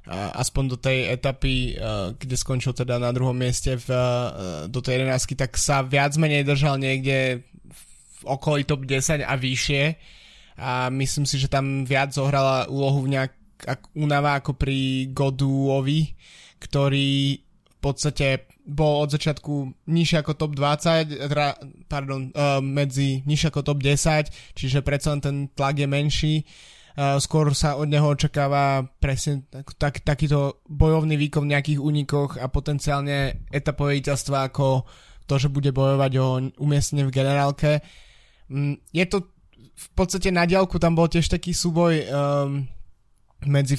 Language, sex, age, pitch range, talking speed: Slovak, male, 20-39, 135-150 Hz, 140 wpm